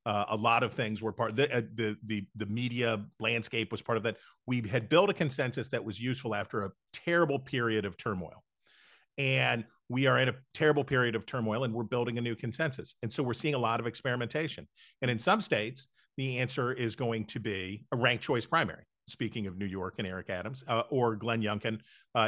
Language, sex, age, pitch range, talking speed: English, male, 40-59, 110-130 Hz, 220 wpm